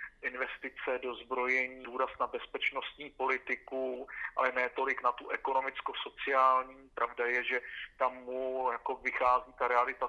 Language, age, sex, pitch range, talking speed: Slovak, 40-59, male, 125-130 Hz, 125 wpm